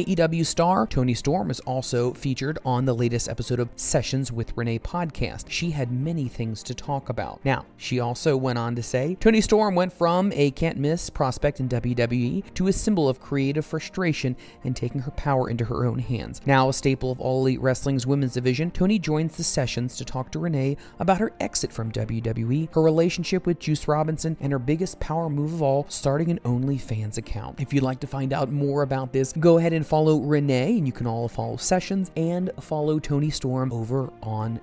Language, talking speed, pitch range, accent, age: English, 205 wpm, 125-165 Hz, American, 30-49